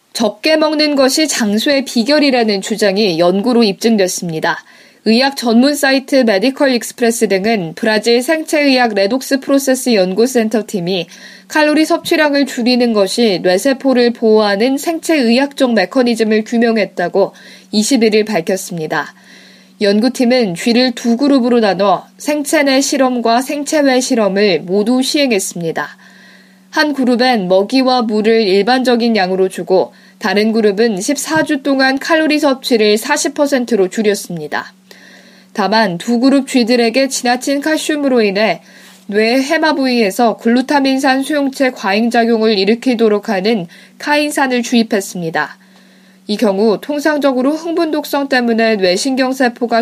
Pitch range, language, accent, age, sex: 205-270 Hz, Korean, native, 20-39, female